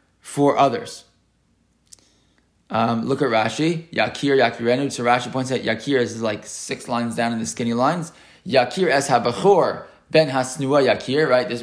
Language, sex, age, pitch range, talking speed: English, male, 20-39, 120-140 Hz, 155 wpm